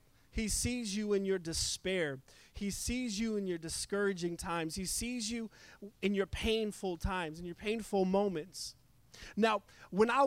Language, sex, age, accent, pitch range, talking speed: English, male, 30-49, American, 165-215 Hz, 160 wpm